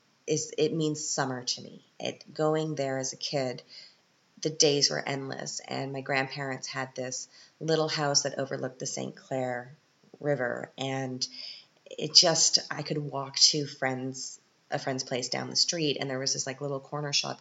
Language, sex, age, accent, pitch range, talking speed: English, female, 30-49, American, 130-155 Hz, 175 wpm